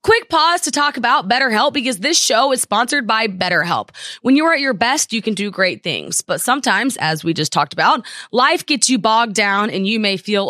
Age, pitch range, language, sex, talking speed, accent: 20-39, 195-270 Hz, English, female, 230 wpm, American